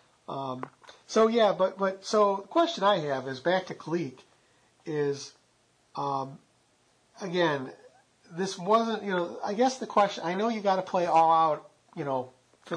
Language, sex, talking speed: English, male, 170 wpm